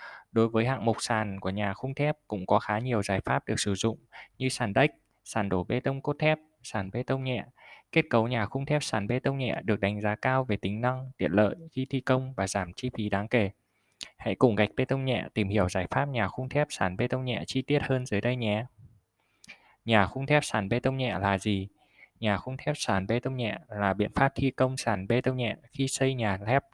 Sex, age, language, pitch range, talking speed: male, 20-39, Vietnamese, 105-130 Hz, 245 wpm